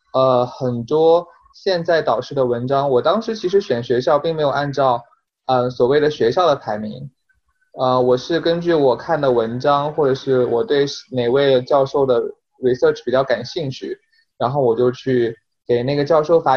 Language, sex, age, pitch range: Chinese, male, 20-39, 120-145 Hz